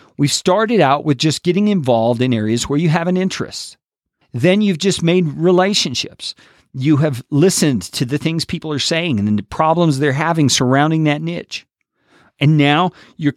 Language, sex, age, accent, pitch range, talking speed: English, male, 50-69, American, 130-185 Hz, 175 wpm